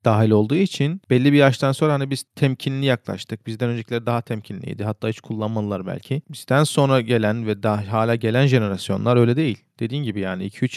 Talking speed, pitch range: 185 wpm, 110-130 Hz